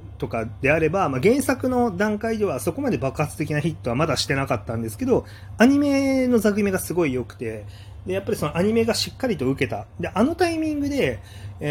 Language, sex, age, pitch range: Japanese, male, 30-49, 105-175 Hz